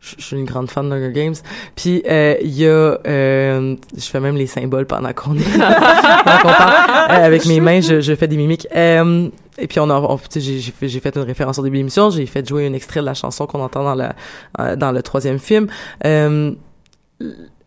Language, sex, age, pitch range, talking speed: French, female, 20-39, 140-165 Hz, 210 wpm